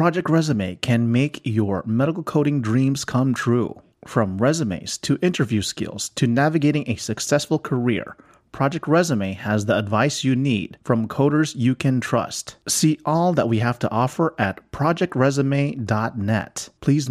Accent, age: American, 30-49